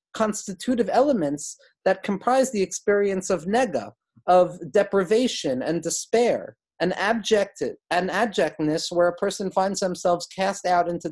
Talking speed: 125 wpm